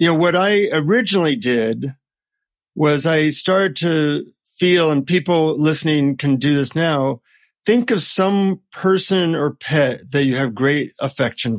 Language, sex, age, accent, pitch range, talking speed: English, male, 50-69, American, 130-165 Hz, 150 wpm